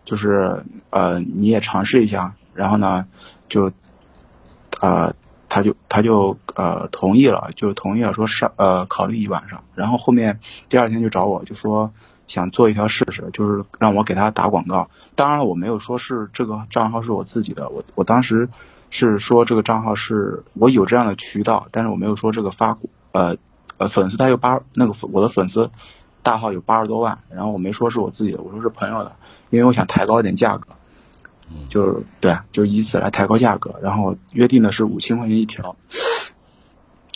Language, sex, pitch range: Chinese, male, 95-115 Hz